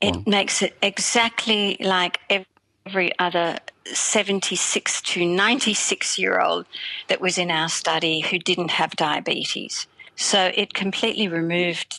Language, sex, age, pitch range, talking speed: English, female, 50-69, 170-200 Hz, 115 wpm